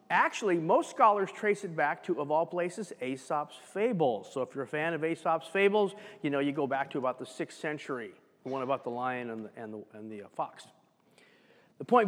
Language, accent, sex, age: English, American, male, 40-59